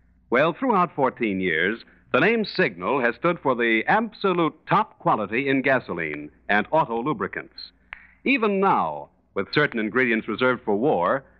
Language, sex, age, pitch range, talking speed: English, male, 50-69, 100-170 Hz, 140 wpm